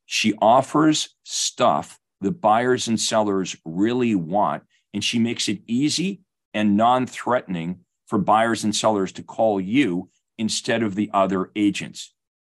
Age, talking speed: 40-59, 135 wpm